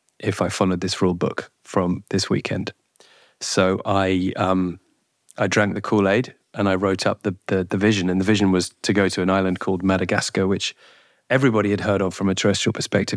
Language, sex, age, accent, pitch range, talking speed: English, male, 30-49, British, 95-100 Hz, 200 wpm